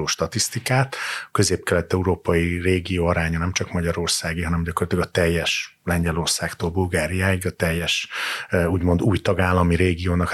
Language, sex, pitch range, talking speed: Hungarian, male, 85-95 Hz, 110 wpm